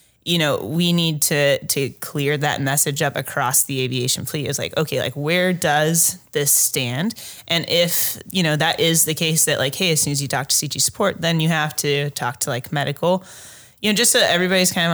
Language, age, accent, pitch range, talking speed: English, 20-39, American, 140-160 Hz, 220 wpm